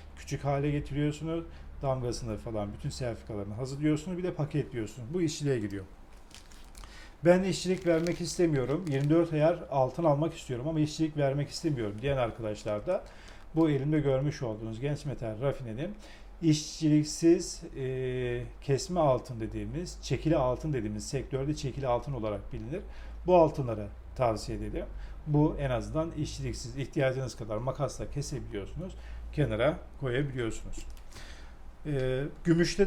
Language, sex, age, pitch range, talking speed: Turkish, male, 40-59, 115-155 Hz, 120 wpm